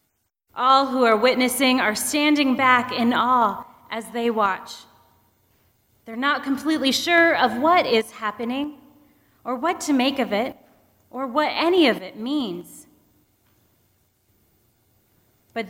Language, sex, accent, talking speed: English, female, American, 125 wpm